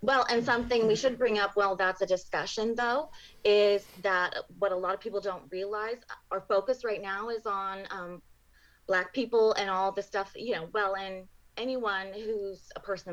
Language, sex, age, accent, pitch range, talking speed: English, female, 20-39, American, 185-225 Hz, 190 wpm